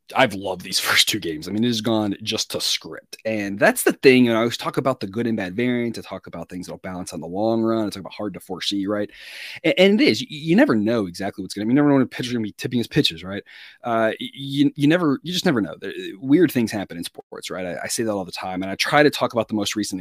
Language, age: English, 30-49